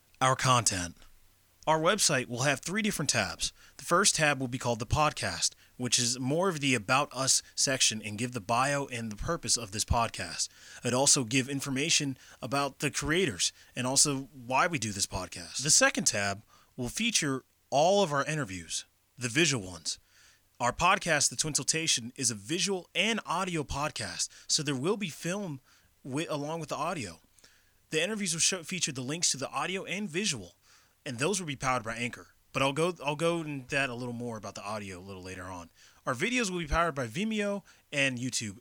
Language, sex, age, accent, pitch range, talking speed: English, male, 30-49, American, 105-160 Hz, 195 wpm